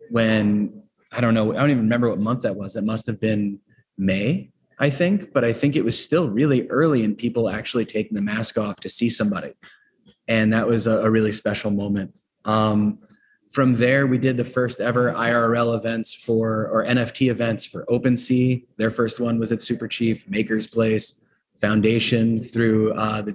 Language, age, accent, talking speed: English, 30-49, American, 180 wpm